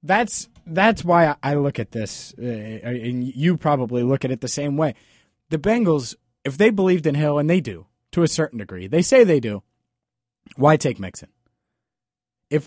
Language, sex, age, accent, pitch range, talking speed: English, male, 30-49, American, 125-170 Hz, 185 wpm